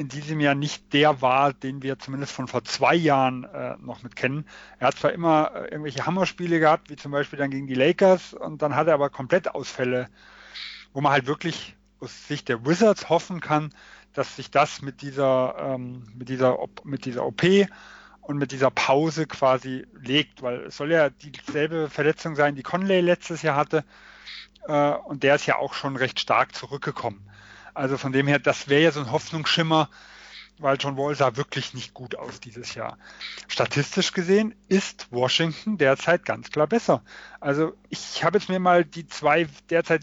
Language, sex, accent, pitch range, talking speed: German, male, German, 140-185 Hz, 185 wpm